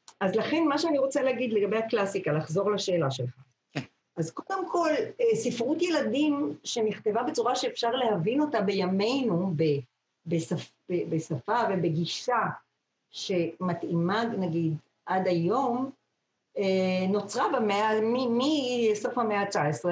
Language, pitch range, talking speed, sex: Hebrew, 205-280 Hz, 110 wpm, female